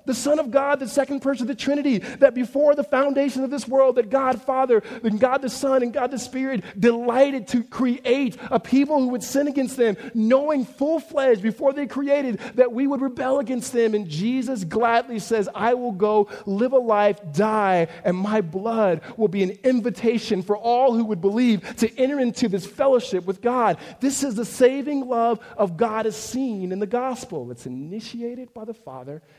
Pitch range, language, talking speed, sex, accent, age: 150-250 Hz, English, 195 wpm, male, American, 40-59